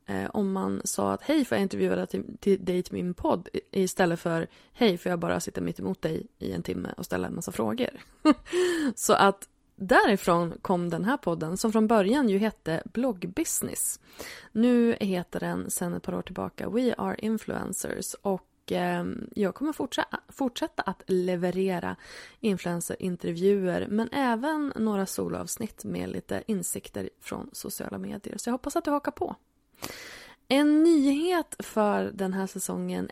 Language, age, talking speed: Swedish, 20-39, 160 wpm